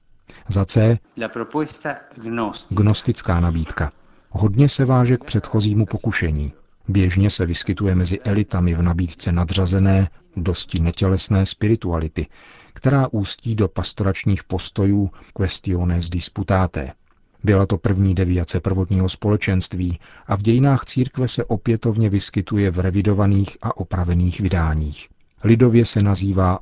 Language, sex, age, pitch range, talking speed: Czech, male, 40-59, 90-110 Hz, 110 wpm